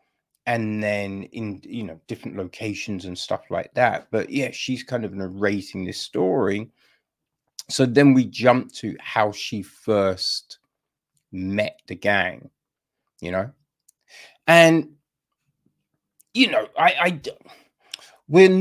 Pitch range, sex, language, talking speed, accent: 110-150 Hz, male, English, 125 wpm, British